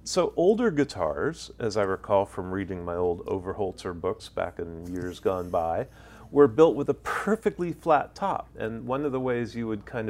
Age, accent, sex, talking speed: 40-59, American, male, 190 wpm